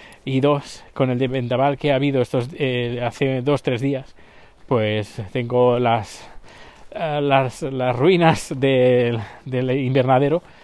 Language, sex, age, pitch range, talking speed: Spanish, male, 20-39, 125-150 Hz, 135 wpm